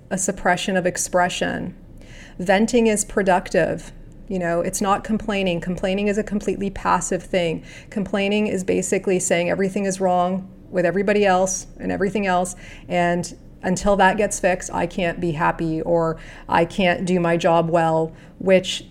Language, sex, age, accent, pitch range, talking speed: English, female, 30-49, American, 175-195 Hz, 150 wpm